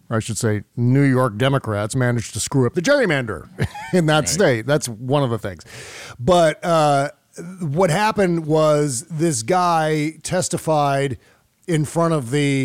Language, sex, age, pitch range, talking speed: English, male, 50-69, 130-170 Hz, 150 wpm